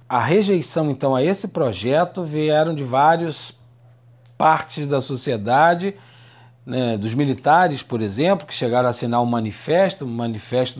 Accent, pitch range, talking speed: Brazilian, 120-160 Hz, 135 wpm